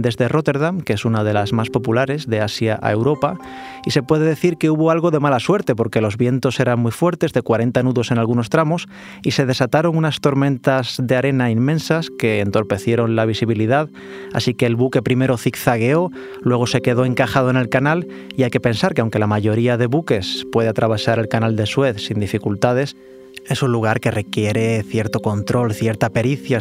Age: 30-49